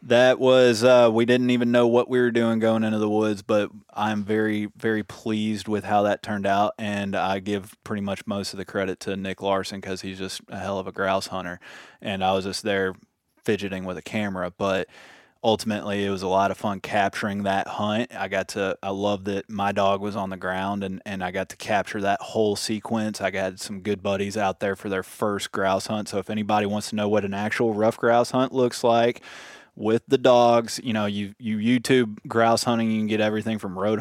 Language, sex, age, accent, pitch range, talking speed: English, male, 20-39, American, 100-110 Hz, 230 wpm